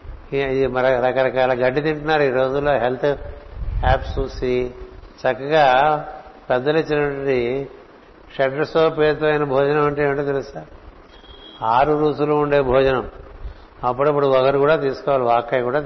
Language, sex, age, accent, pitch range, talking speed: Telugu, male, 60-79, native, 120-145 Hz, 105 wpm